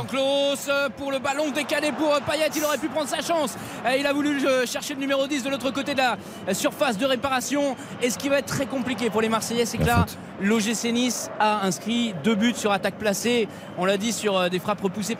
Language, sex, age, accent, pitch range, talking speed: French, male, 20-39, French, 210-275 Hz, 220 wpm